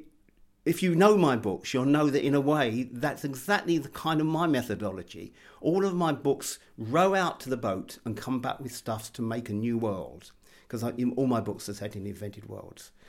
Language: English